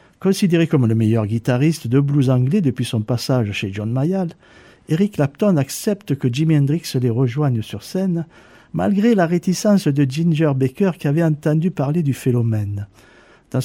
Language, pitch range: French, 125-165 Hz